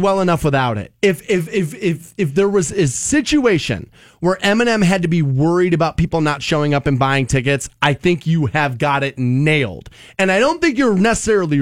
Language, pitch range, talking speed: English, 145-225 Hz, 205 wpm